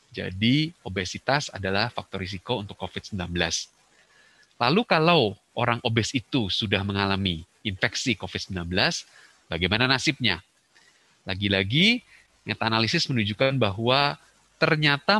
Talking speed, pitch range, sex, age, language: 95 wpm, 100-130 Hz, male, 30-49, Indonesian